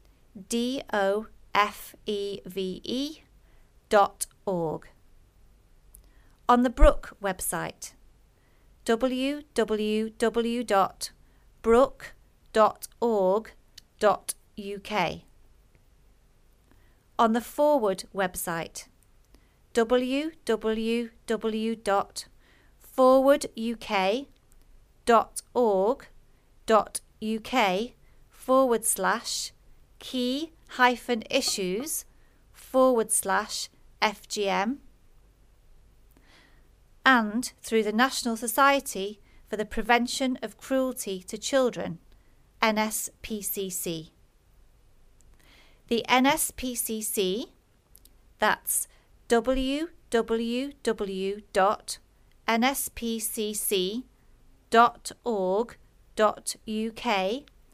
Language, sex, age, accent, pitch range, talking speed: English, female, 40-59, British, 205-250 Hz, 45 wpm